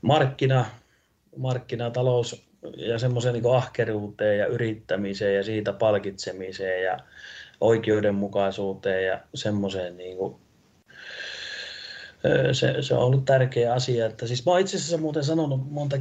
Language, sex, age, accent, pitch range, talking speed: Finnish, male, 30-49, native, 100-125 Hz, 110 wpm